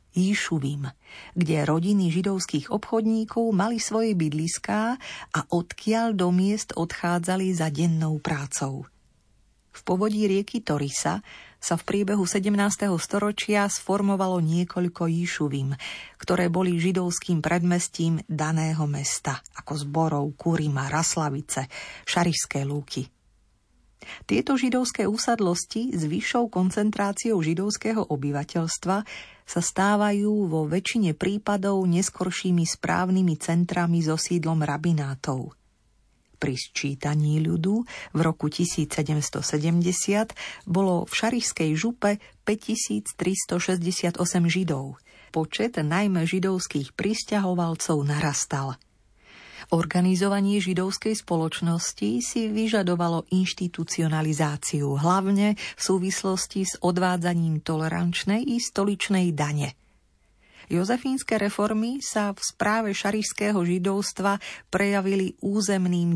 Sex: female